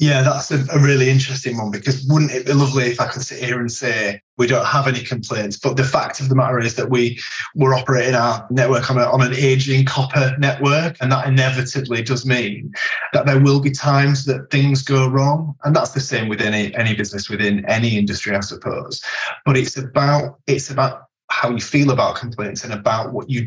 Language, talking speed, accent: English, 215 wpm, British